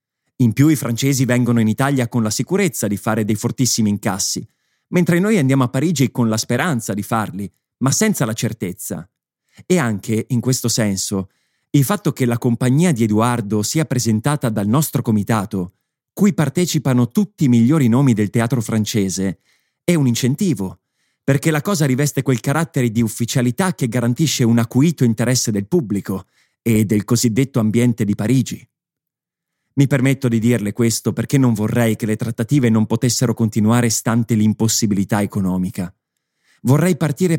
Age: 30-49